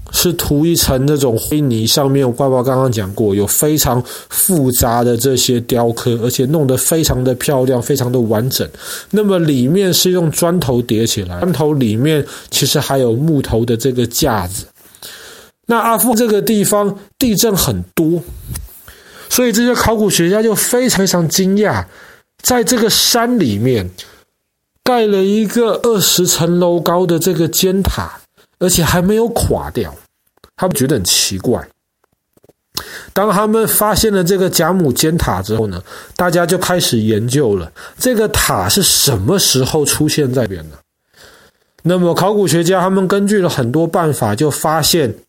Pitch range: 125-185 Hz